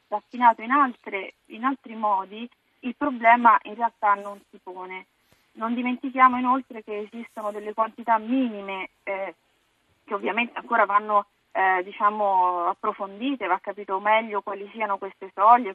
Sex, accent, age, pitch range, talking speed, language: female, native, 20-39, 195-225 Hz, 125 wpm, Italian